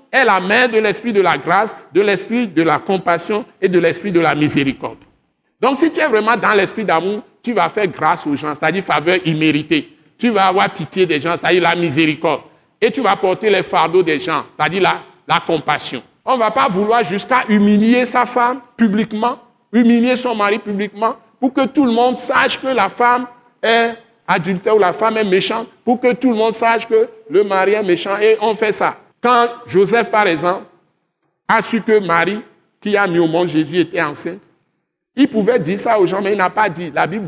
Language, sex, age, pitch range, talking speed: French, male, 60-79, 175-235 Hz, 210 wpm